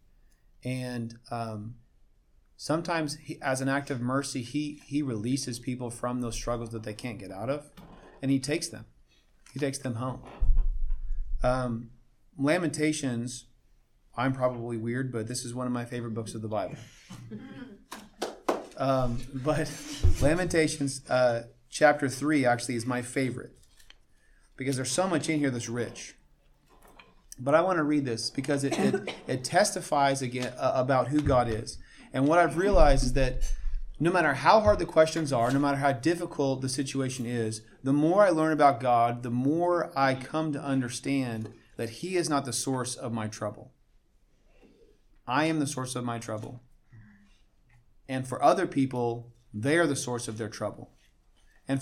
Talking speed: 160 wpm